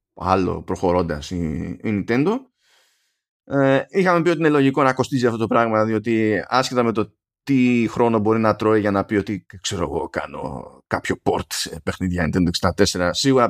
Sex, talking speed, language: male, 170 wpm, Greek